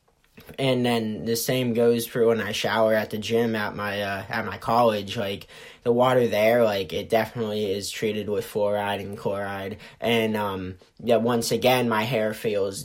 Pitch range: 105-135 Hz